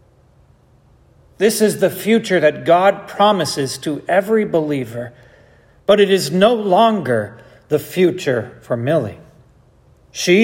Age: 40-59